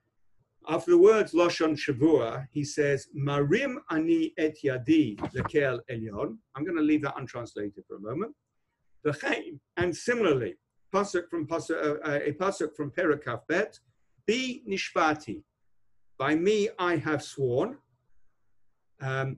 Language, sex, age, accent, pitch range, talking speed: English, male, 50-69, British, 135-175 Hz, 125 wpm